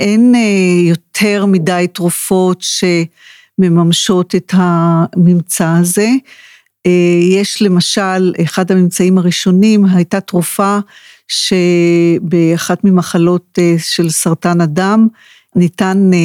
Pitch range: 170-195 Hz